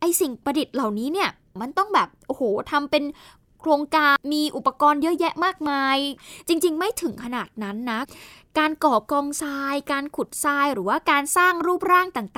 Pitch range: 230-315 Hz